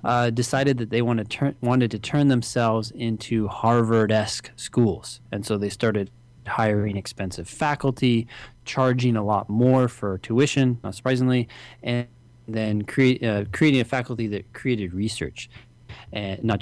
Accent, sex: American, male